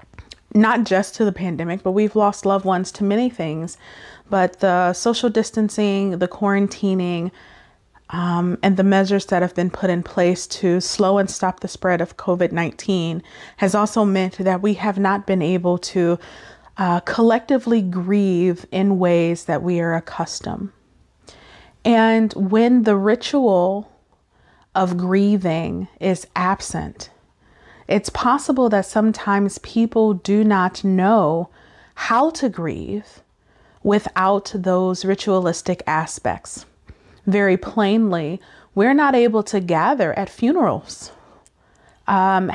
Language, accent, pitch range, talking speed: English, American, 180-215 Hz, 125 wpm